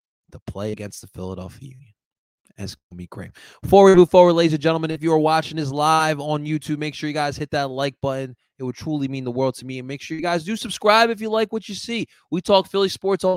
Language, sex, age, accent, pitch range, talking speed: English, male, 20-39, American, 120-160 Hz, 270 wpm